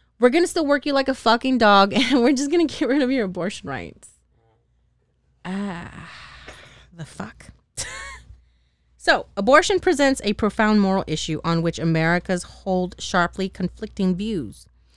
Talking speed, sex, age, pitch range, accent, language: 150 wpm, female, 30-49, 150-210 Hz, American, English